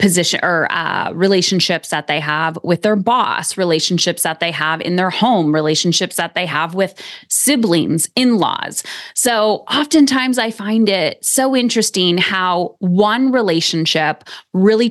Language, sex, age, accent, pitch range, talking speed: English, female, 20-39, American, 170-215 Hz, 140 wpm